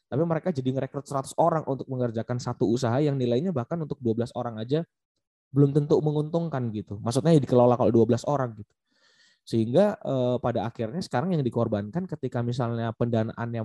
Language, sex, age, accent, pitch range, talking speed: Indonesian, male, 20-39, native, 110-135 Hz, 165 wpm